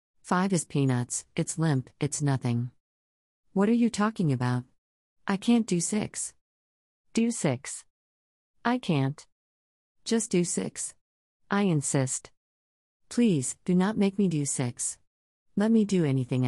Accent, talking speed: American, 130 wpm